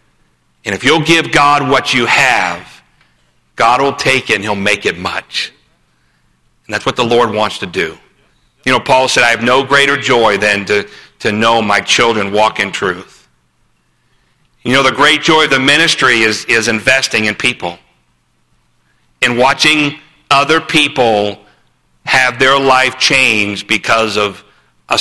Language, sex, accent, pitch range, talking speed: English, male, American, 100-135 Hz, 160 wpm